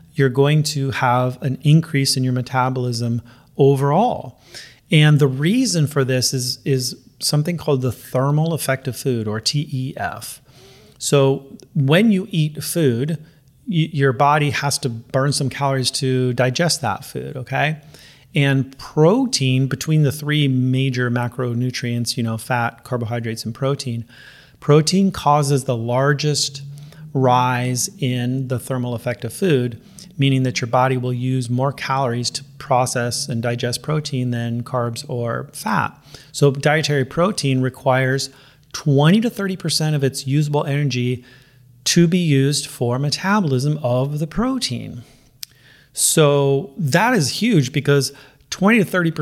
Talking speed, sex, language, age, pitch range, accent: 135 wpm, male, English, 30-49, 125-150 Hz, American